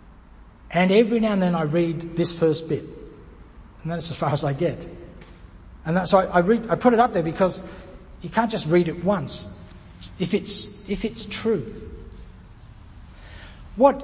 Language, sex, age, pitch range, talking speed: English, male, 60-79, 145-190 Hz, 175 wpm